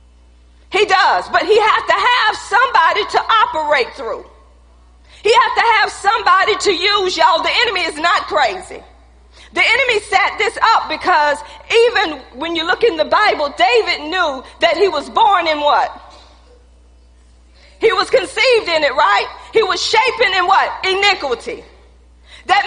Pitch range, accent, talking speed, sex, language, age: 315-445 Hz, American, 155 wpm, female, English, 40-59